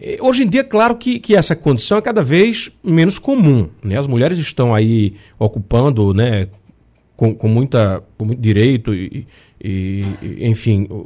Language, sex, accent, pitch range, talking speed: Portuguese, male, Brazilian, 115-185 Hz, 170 wpm